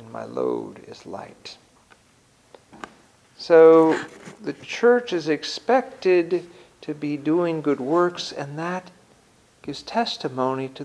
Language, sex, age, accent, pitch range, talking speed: English, male, 50-69, American, 150-210 Hz, 105 wpm